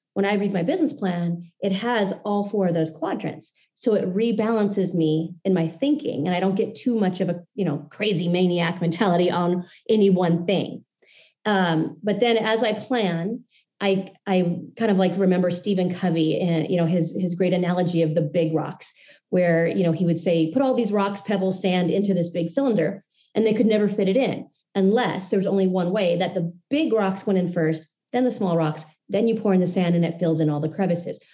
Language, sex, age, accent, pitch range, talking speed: English, female, 30-49, American, 175-210 Hz, 220 wpm